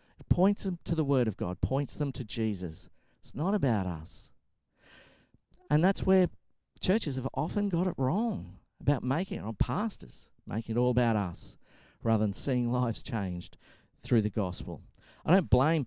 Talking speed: 165 wpm